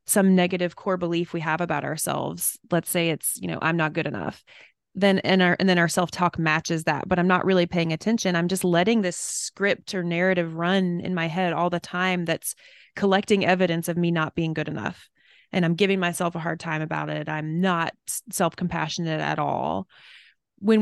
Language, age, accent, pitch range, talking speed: English, 20-39, American, 165-190 Hz, 210 wpm